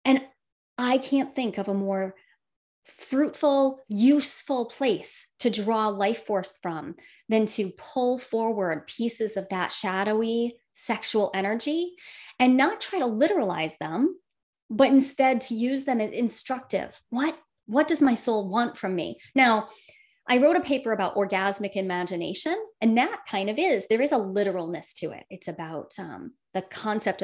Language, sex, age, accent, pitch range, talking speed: English, female, 30-49, American, 195-260 Hz, 155 wpm